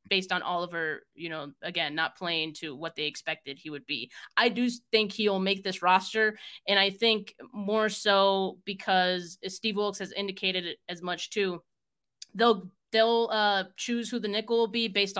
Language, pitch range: English, 175-210 Hz